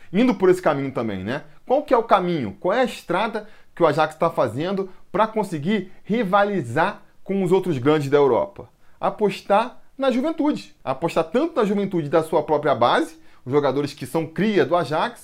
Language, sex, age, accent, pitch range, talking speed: Portuguese, male, 20-39, Brazilian, 150-210 Hz, 180 wpm